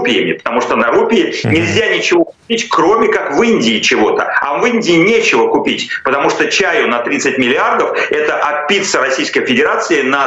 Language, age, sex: Ukrainian, 40-59, male